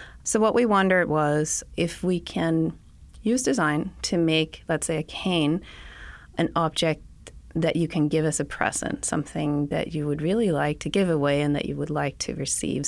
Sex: female